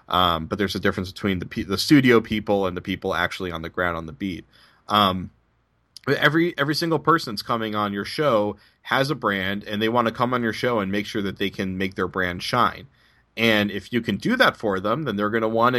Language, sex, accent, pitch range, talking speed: English, male, American, 95-115 Hz, 240 wpm